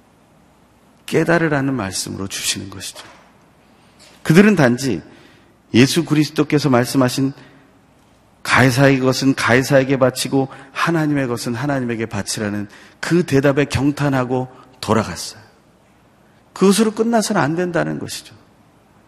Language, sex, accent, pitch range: Korean, male, native, 115-155 Hz